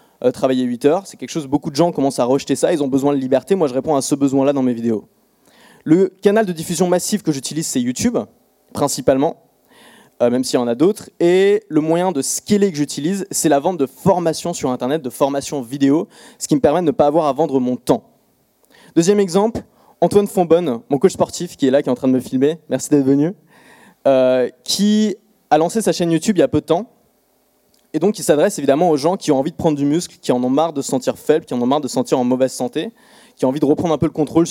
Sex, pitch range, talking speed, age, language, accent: male, 140-210 Hz, 255 wpm, 20-39, French, French